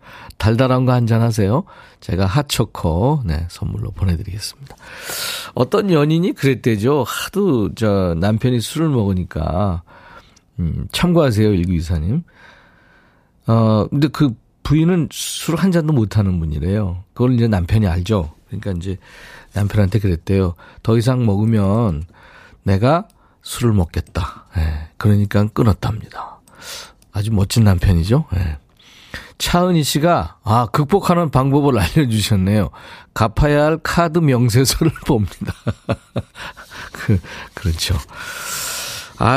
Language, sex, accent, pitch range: Korean, male, native, 95-140 Hz